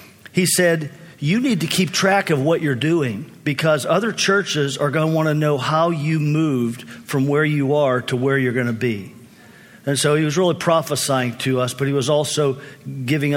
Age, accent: 50-69, American